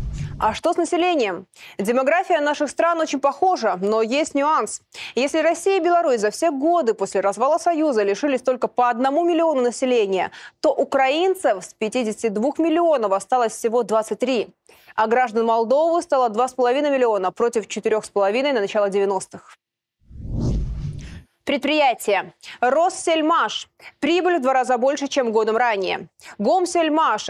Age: 20-39